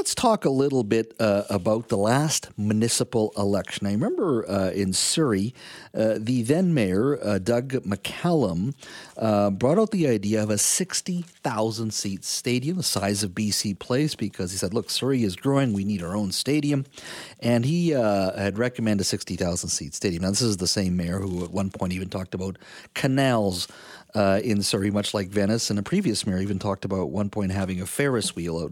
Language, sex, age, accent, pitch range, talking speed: English, male, 50-69, American, 100-125 Hz, 195 wpm